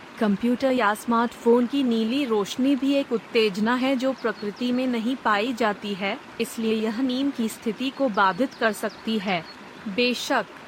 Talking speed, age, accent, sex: 155 wpm, 30-49, native, female